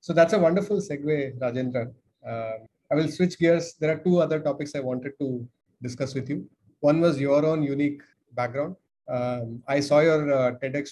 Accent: Indian